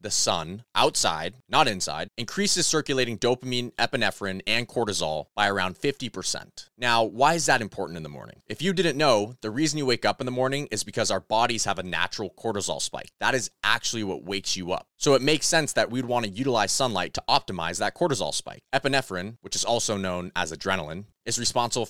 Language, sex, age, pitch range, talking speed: English, male, 20-39, 95-130 Hz, 205 wpm